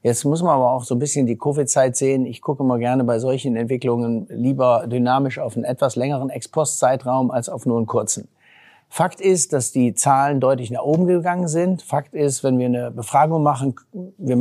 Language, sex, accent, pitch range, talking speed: German, male, German, 120-140 Hz, 200 wpm